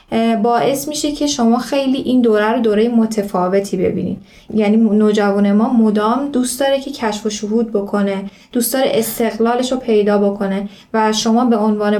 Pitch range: 210-250 Hz